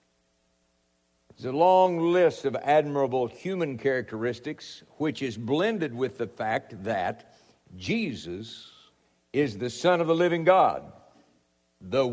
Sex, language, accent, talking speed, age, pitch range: male, English, American, 120 wpm, 60-79, 110-165 Hz